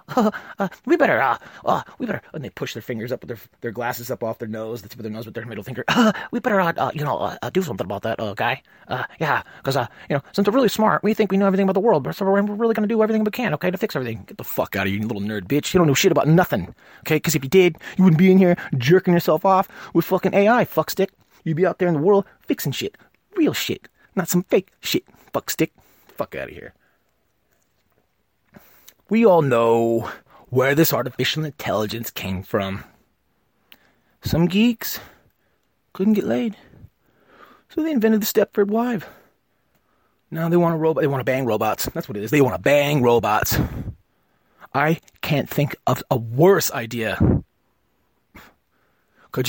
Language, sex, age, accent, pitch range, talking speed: English, male, 30-49, American, 120-195 Hz, 210 wpm